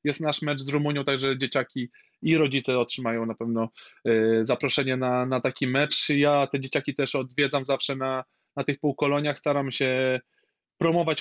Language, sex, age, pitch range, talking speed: Polish, male, 20-39, 125-150 Hz, 160 wpm